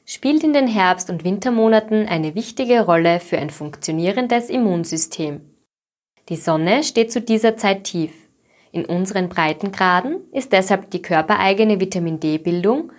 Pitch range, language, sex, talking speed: 170-230 Hz, German, female, 130 wpm